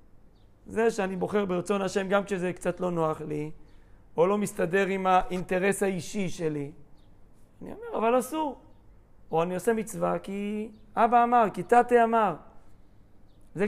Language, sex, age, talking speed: Hebrew, male, 40-59, 145 wpm